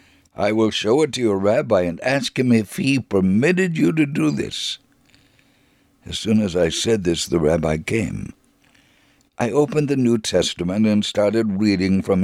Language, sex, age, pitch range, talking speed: English, male, 60-79, 95-125 Hz, 170 wpm